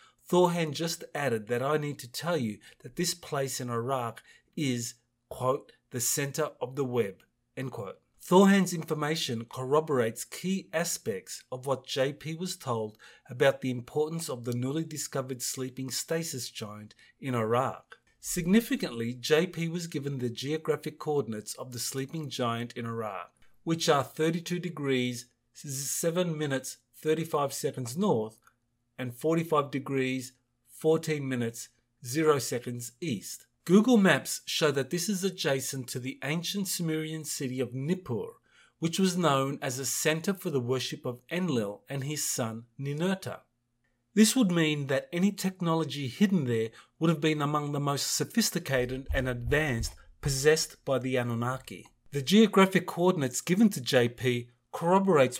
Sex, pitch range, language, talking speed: male, 125-165 Hz, English, 145 wpm